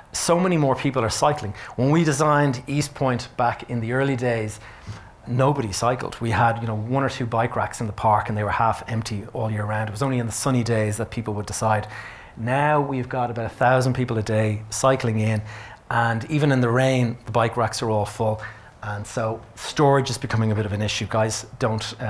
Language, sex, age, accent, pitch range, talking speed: English, male, 30-49, Irish, 110-135 Hz, 230 wpm